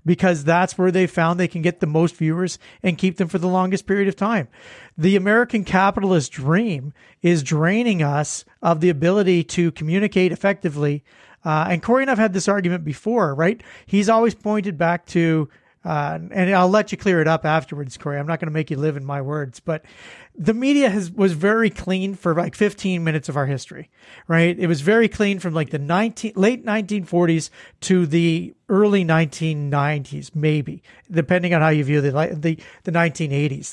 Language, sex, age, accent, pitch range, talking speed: English, male, 40-59, American, 165-205 Hz, 190 wpm